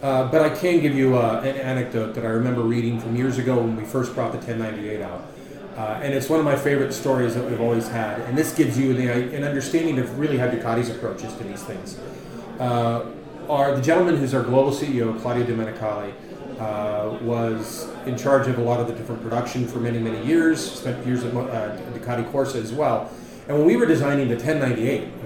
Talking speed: 215 wpm